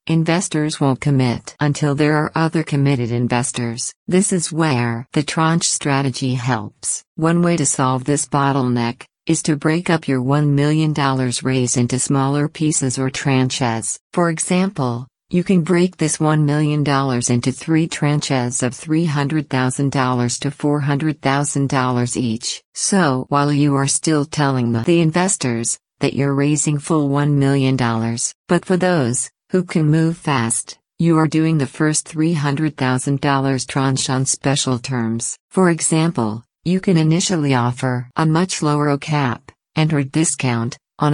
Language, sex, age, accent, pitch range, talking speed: English, female, 50-69, American, 130-160 Hz, 140 wpm